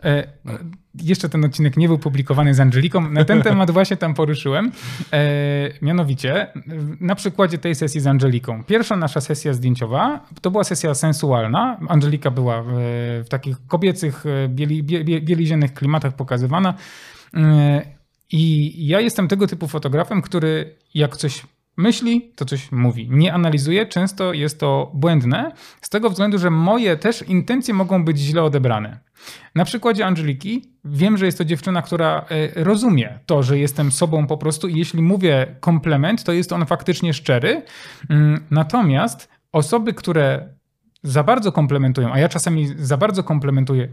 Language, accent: Polish, native